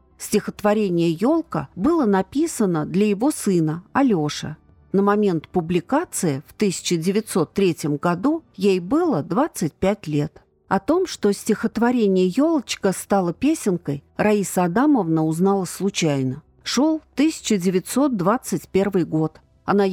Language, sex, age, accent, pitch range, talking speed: Russian, female, 40-59, native, 175-230 Hz, 100 wpm